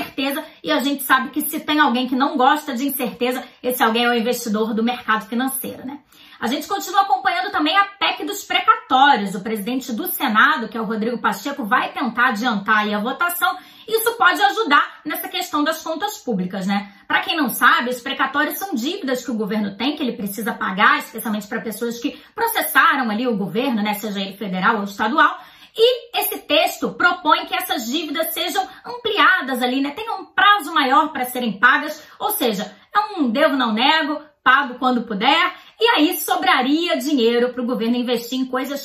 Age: 20-39